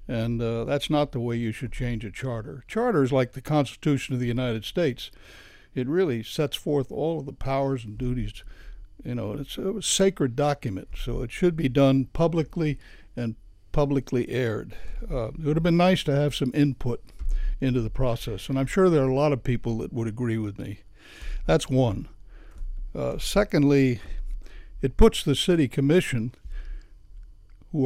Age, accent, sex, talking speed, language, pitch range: 60-79, American, male, 180 wpm, English, 115-150 Hz